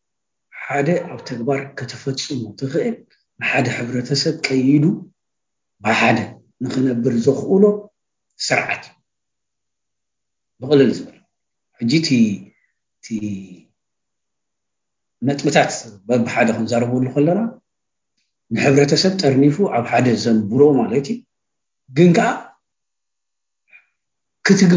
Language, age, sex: English, 60-79, male